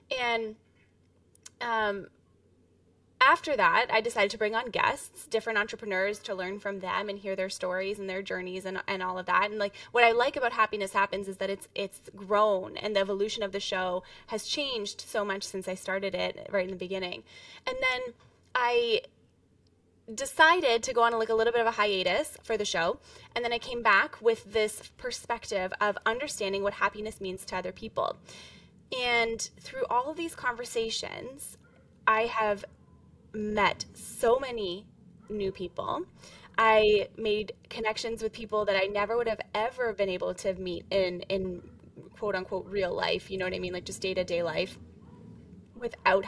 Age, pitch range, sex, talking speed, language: 10-29, 190-230 Hz, female, 180 wpm, English